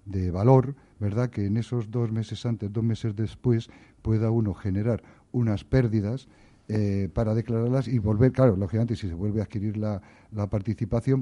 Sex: male